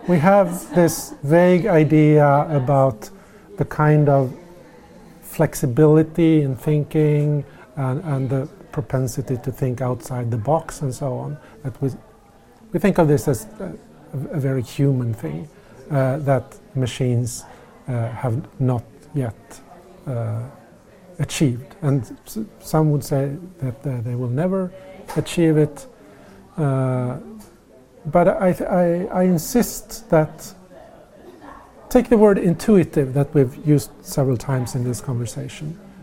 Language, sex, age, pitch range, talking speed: English, male, 50-69, 135-180 Hz, 125 wpm